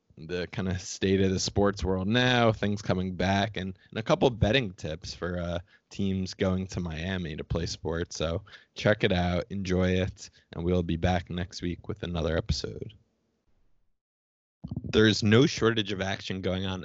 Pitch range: 90-110 Hz